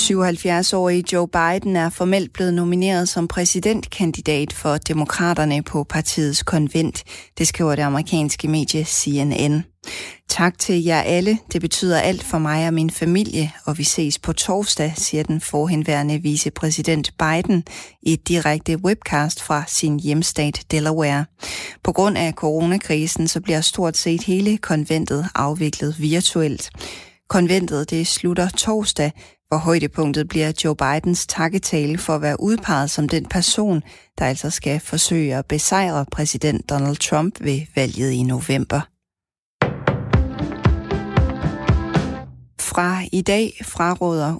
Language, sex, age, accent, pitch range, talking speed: Danish, female, 30-49, native, 150-175 Hz, 130 wpm